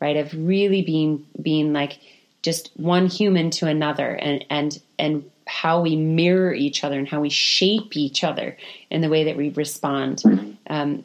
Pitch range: 145-180 Hz